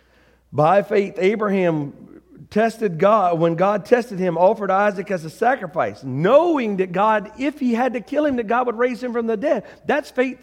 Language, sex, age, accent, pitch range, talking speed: English, male, 40-59, American, 175-235 Hz, 190 wpm